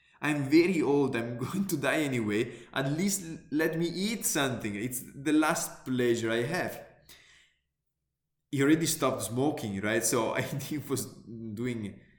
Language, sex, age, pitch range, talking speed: English, male, 20-39, 110-140 Hz, 145 wpm